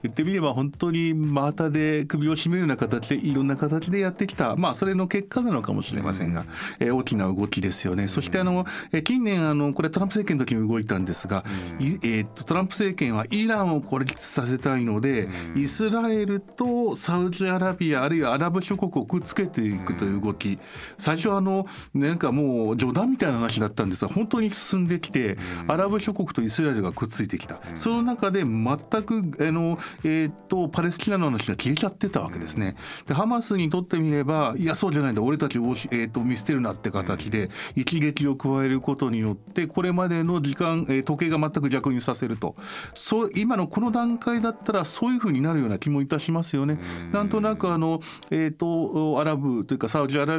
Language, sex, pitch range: Japanese, male, 115-180 Hz